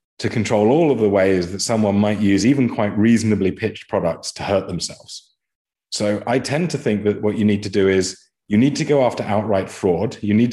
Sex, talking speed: male, 220 wpm